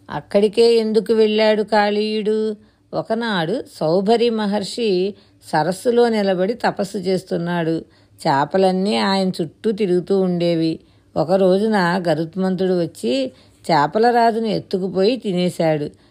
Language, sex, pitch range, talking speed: Telugu, female, 165-215 Hz, 85 wpm